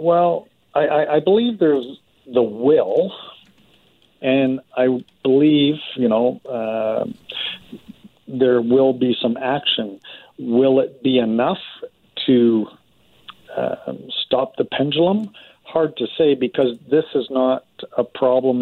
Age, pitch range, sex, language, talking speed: 50-69, 110-135 Hz, male, English, 115 wpm